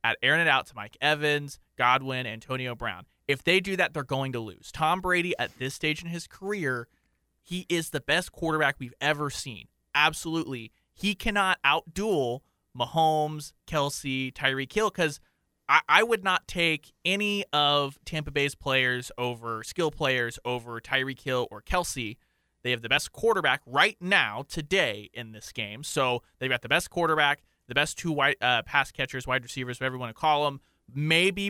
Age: 20-39